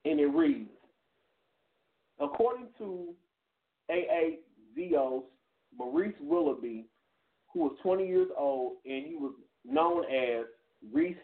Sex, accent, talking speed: male, American, 100 wpm